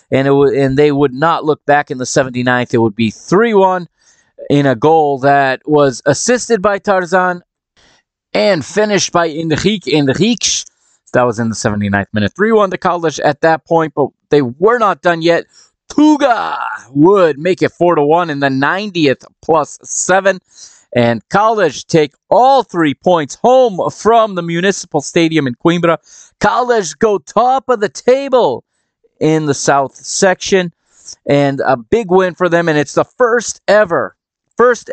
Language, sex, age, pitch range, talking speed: English, male, 30-49, 125-180 Hz, 155 wpm